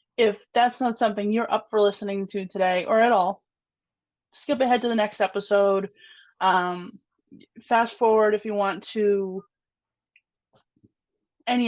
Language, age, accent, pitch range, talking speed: English, 20-39, American, 180-215 Hz, 140 wpm